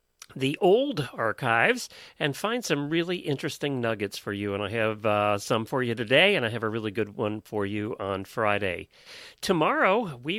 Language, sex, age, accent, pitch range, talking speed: English, male, 40-59, American, 115-155 Hz, 185 wpm